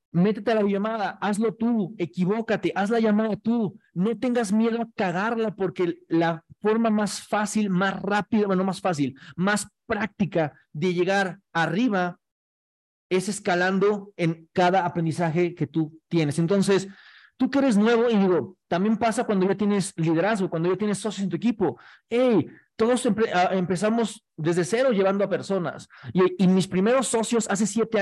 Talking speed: 160 wpm